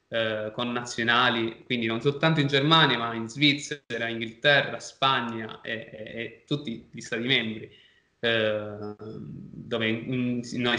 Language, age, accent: Italian, 20-39, native